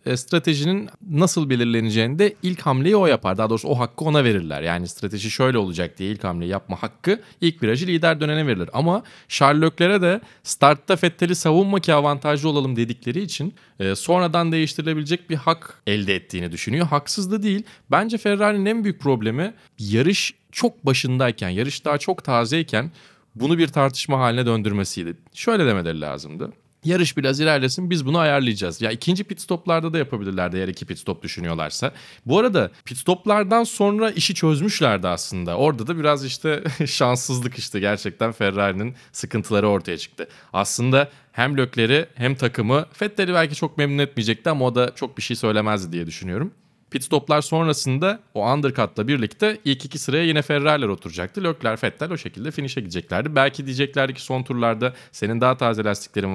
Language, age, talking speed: Turkish, 30-49, 160 wpm